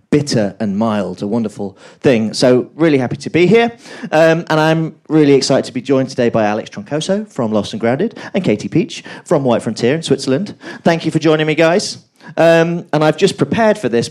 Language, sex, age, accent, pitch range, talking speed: English, male, 30-49, British, 120-160 Hz, 210 wpm